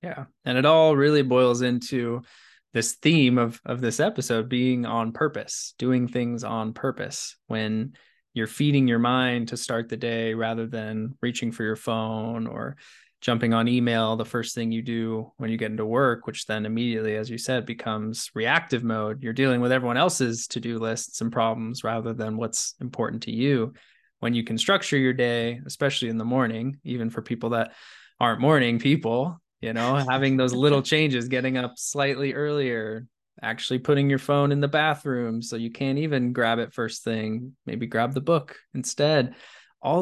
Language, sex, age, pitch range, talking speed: English, male, 20-39, 115-135 Hz, 185 wpm